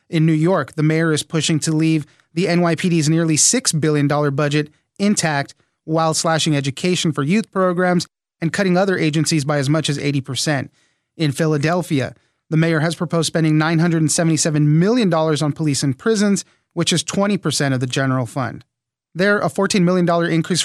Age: 30-49